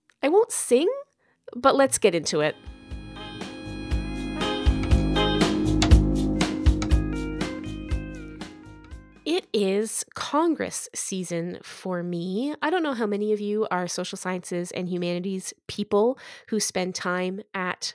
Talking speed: 105 wpm